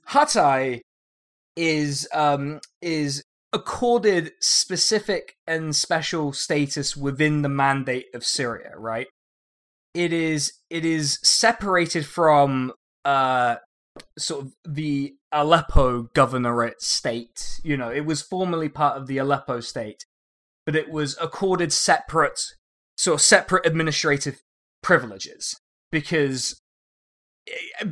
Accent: British